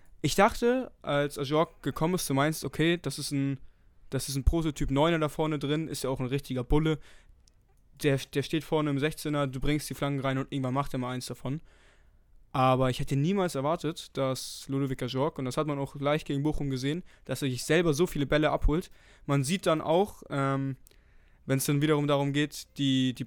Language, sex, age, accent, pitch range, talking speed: German, male, 20-39, German, 130-150 Hz, 205 wpm